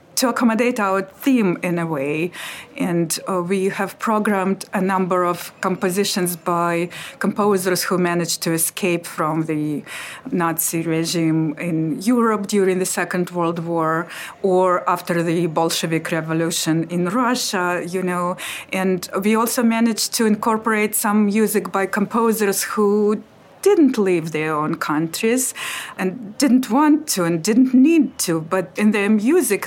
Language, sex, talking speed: English, female, 140 wpm